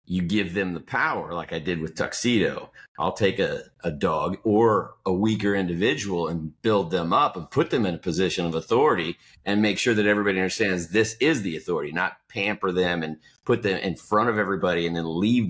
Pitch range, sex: 85-105 Hz, male